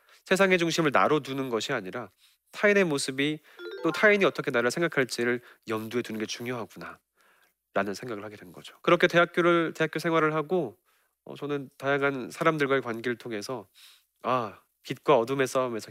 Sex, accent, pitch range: male, native, 120-170 Hz